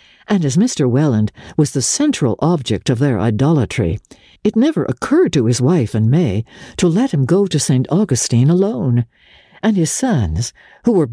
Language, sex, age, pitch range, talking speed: English, female, 60-79, 120-195 Hz, 175 wpm